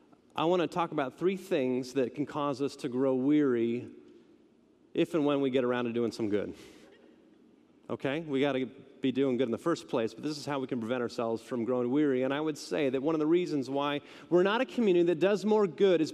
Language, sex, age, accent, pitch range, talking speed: English, male, 30-49, American, 145-220 Hz, 240 wpm